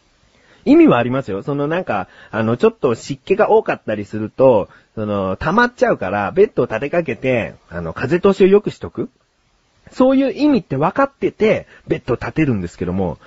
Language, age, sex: Japanese, 40-59, male